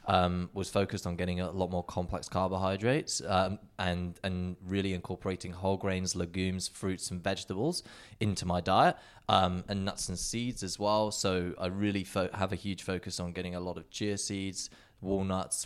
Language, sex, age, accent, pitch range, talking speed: English, male, 20-39, British, 90-100 Hz, 180 wpm